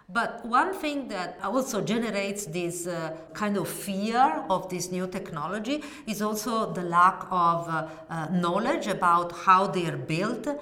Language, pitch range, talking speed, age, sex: English, 185-250 Hz, 160 wpm, 40-59, female